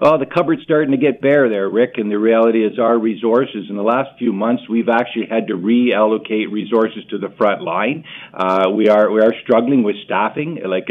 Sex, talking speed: male, 220 wpm